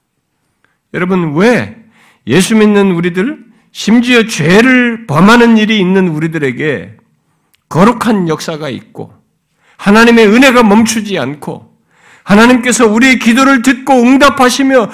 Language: Korean